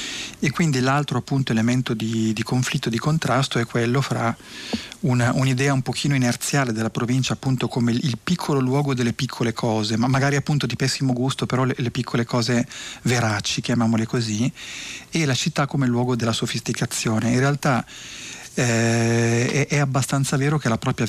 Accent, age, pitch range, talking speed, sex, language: native, 40-59, 115-135 Hz, 170 wpm, male, Italian